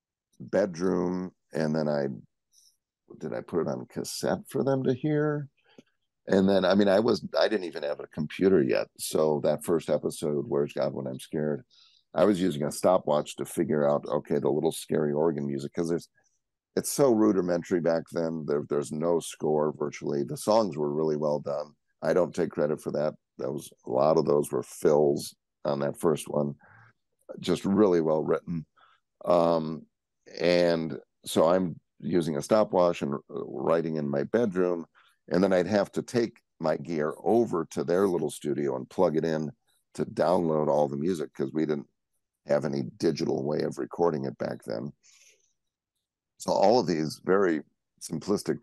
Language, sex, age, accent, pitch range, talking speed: English, male, 50-69, American, 75-85 Hz, 175 wpm